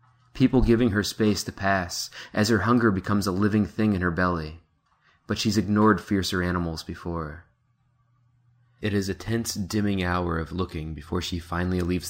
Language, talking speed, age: English, 170 wpm, 20-39